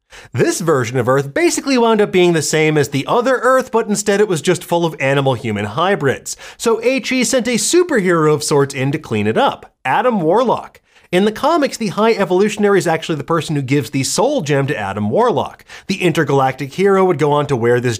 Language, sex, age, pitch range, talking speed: English, male, 30-49, 140-220 Hz, 215 wpm